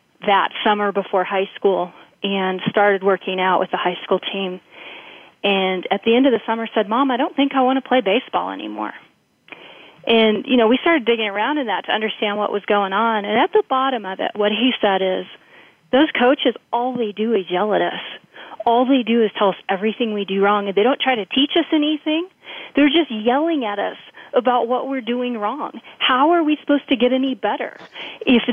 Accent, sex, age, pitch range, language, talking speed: American, female, 30-49, 200-260 Hz, English, 215 wpm